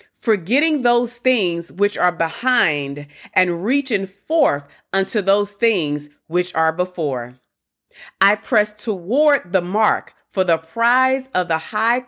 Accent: American